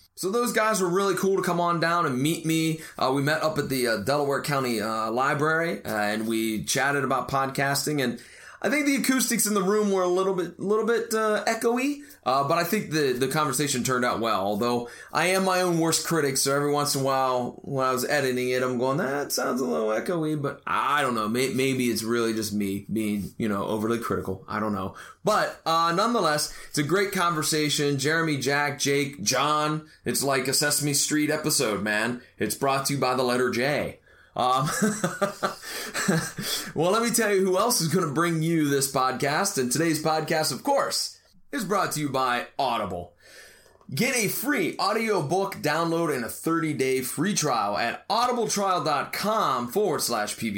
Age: 30-49